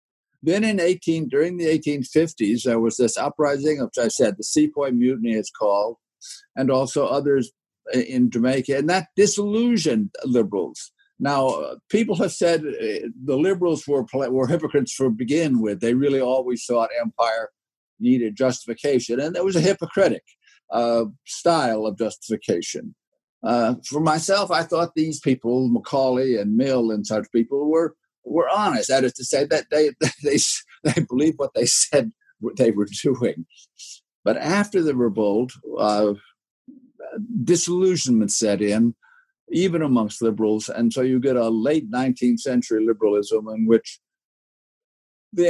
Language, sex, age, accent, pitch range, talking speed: English, male, 60-79, American, 120-175 Hz, 145 wpm